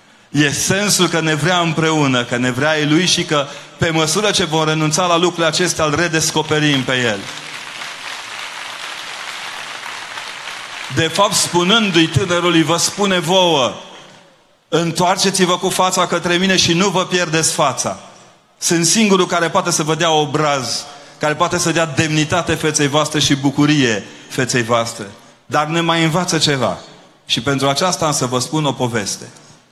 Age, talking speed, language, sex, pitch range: 30-49, 150 wpm, Romanian, male, 130-175 Hz